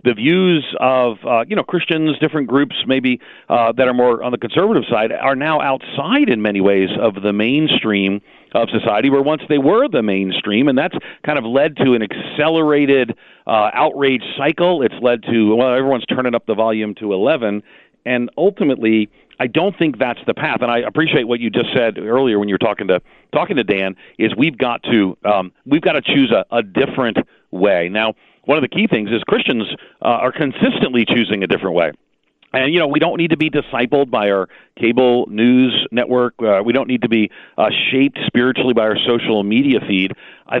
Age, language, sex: 50-69, English, male